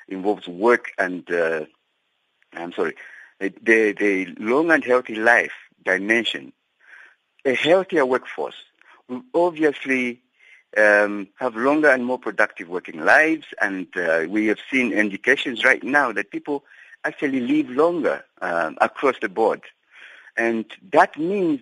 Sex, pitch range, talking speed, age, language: male, 105-160 Hz, 130 wpm, 60-79, English